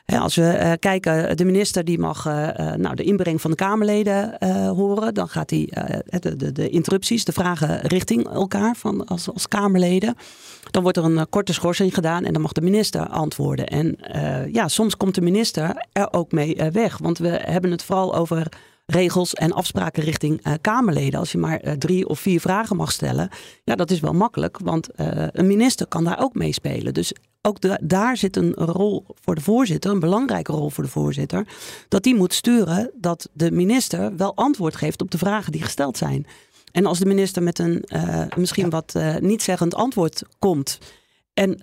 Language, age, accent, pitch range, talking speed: Dutch, 40-59, Dutch, 165-200 Hz, 205 wpm